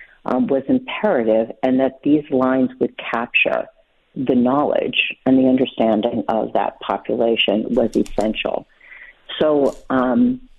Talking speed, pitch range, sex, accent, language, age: 120 wpm, 125-155 Hz, female, American, English, 50-69